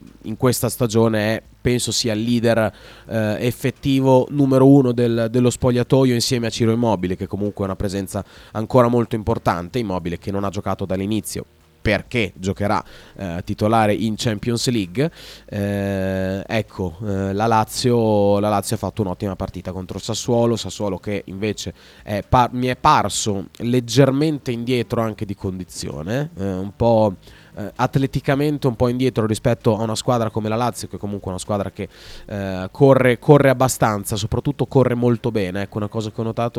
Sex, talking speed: male, 160 wpm